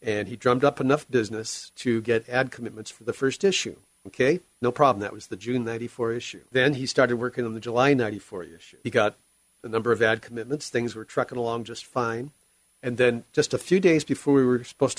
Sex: male